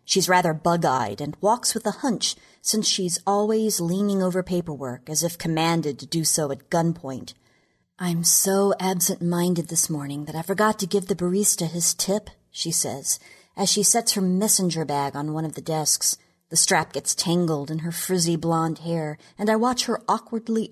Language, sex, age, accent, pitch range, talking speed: English, female, 40-59, American, 155-195 Hz, 180 wpm